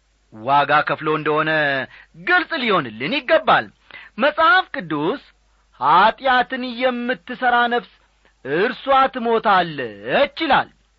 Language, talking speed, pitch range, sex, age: Amharic, 80 wpm, 170-260 Hz, male, 40-59